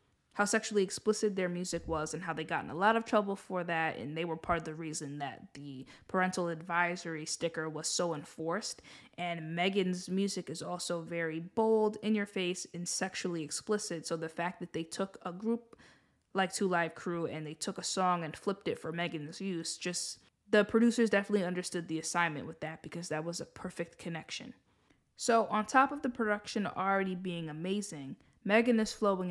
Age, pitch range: 20-39, 165-200 Hz